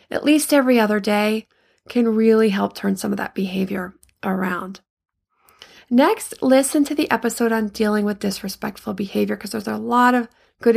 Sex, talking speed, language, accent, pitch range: female, 165 wpm, English, American, 210-265 Hz